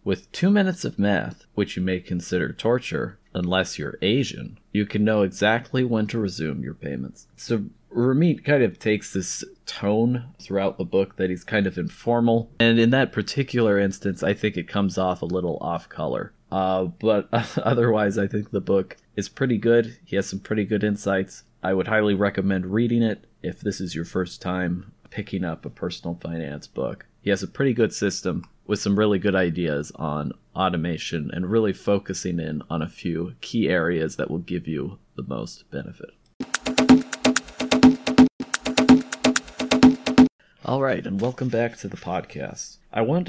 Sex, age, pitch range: male, 30-49, 95-115 Hz